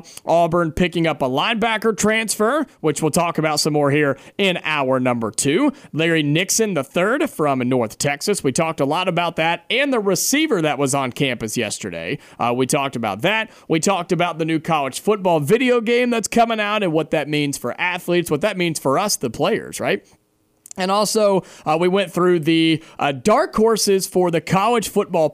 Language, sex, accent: English, male, American